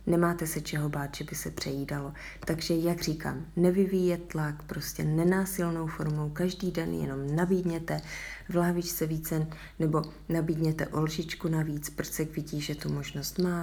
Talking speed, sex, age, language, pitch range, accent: 145 wpm, female, 30-49, Czech, 150-170 Hz, native